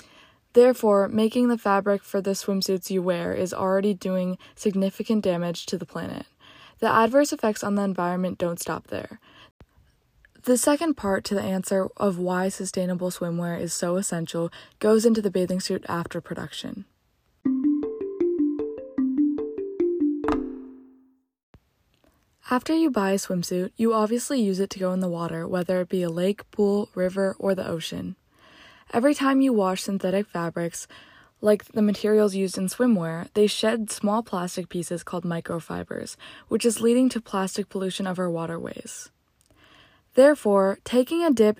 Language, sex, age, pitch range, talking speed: English, female, 20-39, 185-235 Hz, 145 wpm